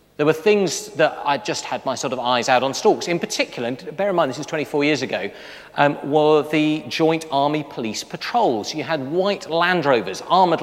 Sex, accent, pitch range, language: male, British, 130-170 Hz, English